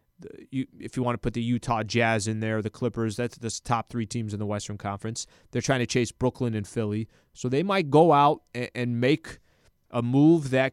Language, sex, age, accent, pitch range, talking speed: English, male, 20-39, American, 115-135 Hz, 215 wpm